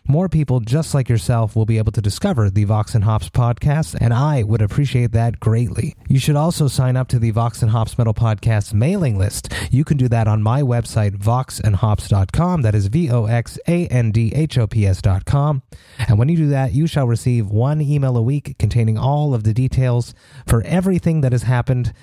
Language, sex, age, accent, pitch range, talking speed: English, male, 30-49, American, 110-140 Hz, 185 wpm